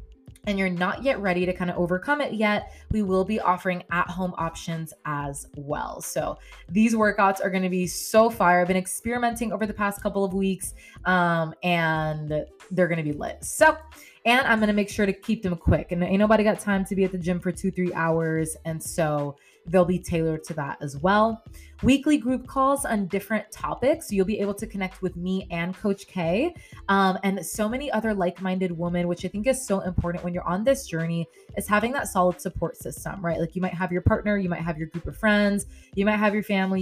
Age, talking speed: 20-39, 225 wpm